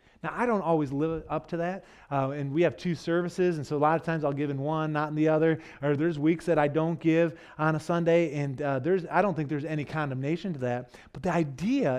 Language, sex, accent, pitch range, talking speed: English, male, American, 125-165 Hz, 260 wpm